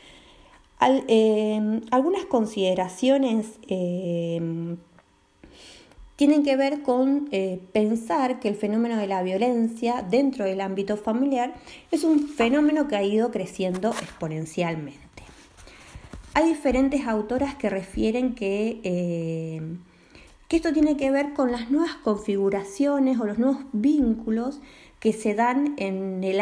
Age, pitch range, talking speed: 20-39, 195-275 Hz, 120 wpm